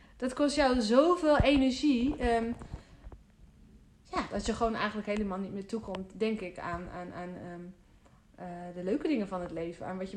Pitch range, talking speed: 200-245 Hz, 185 wpm